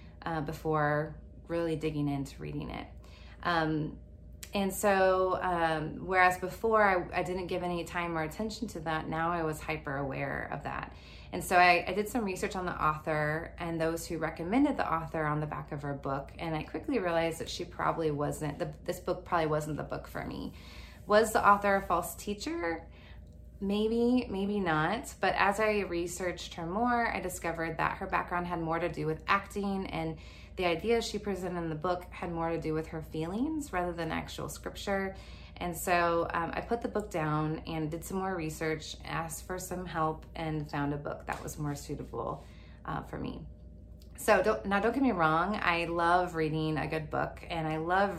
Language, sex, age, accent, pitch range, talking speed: English, female, 20-39, American, 155-185 Hz, 195 wpm